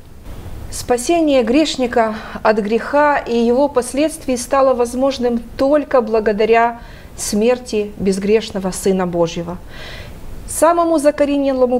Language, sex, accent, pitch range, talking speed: Russian, female, native, 200-265 Hz, 85 wpm